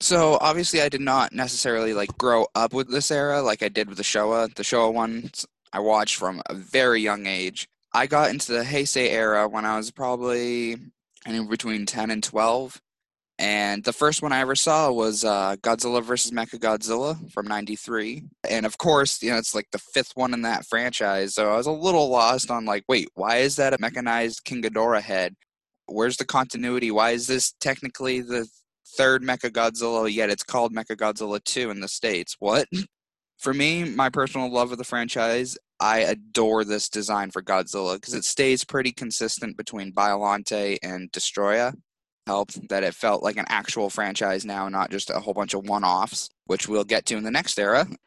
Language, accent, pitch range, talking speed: English, American, 105-130 Hz, 195 wpm